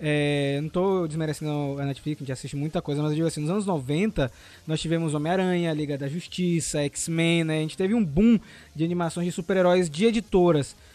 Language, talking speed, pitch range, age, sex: Portuguese, 205 wpm, 160-200 Hz, 20-39, male